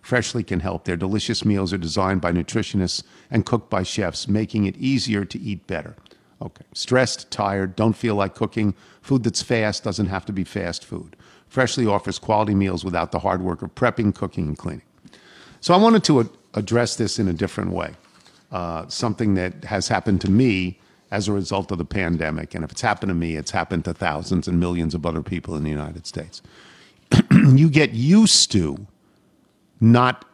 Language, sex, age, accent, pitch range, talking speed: English, male, 50-69, American, 95-120 Hz, 190 wpm